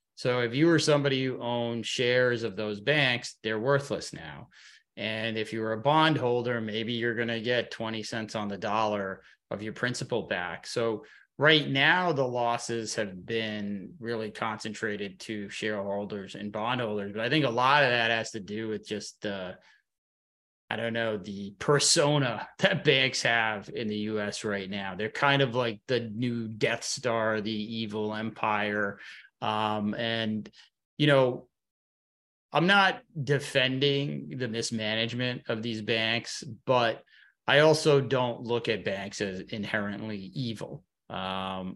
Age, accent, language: 30-49, American, English